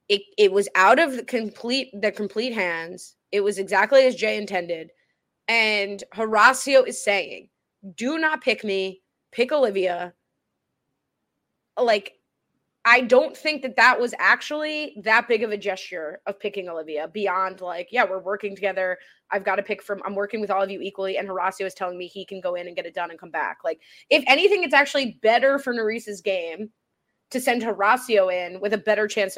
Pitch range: 190-260 Hz